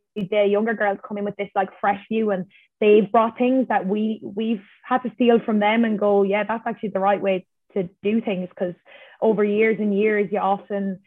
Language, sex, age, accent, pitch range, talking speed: English, female, 20-39, Irish, 195-220 Hz, 215 wpm